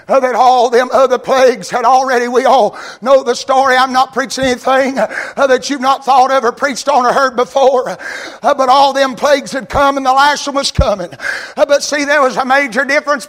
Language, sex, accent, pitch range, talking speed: English, male, American, 275-320 Hz, 210 wpm